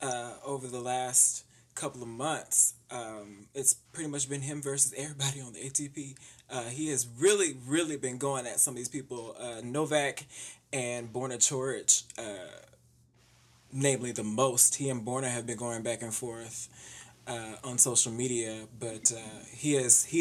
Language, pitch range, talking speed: English, 120-140 Hz, 160 wpm